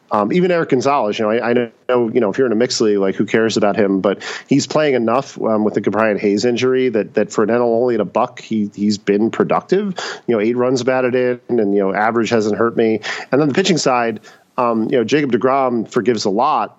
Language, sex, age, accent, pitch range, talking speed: English, male, 40-59, American, 105-130 Hz, 255 wpm